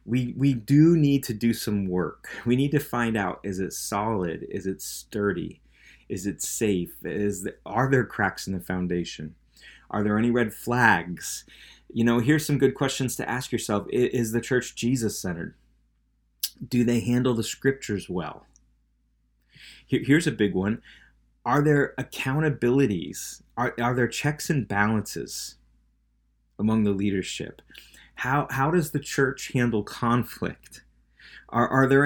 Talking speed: 155 wpm